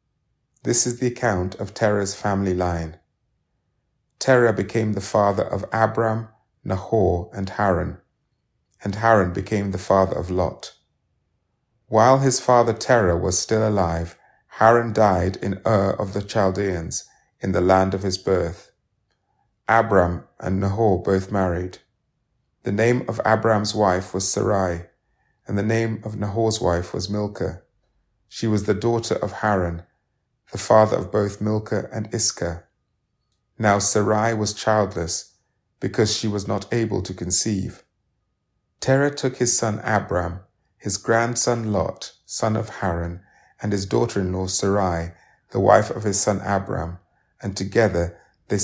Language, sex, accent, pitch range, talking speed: English, male, British, 95-110 Hz, 140 wpm